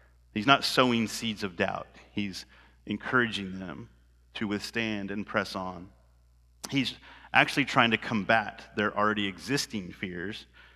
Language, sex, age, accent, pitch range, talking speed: English, male, 30-49, American, 90-110 Hz, 130 wpm